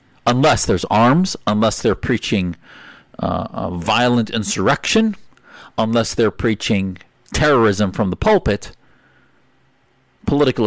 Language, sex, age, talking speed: English, male, 50-69, 100 wpm